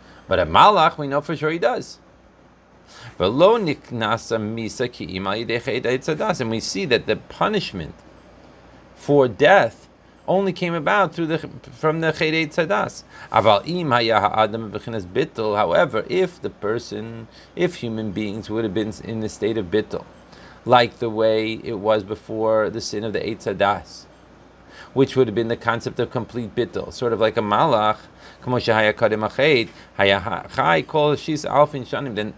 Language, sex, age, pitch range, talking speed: English, male, 30-49, 110-145 Hz, 125 wpm